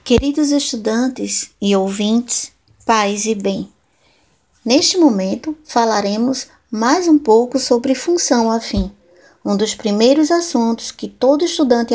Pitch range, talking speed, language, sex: 200-260 Hz, 115 wpm, Portuguese, female